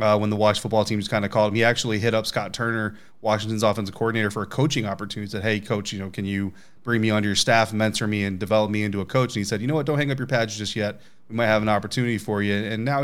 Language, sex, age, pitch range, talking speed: English, male, 30-49, 105-120 Hz, 310 wpm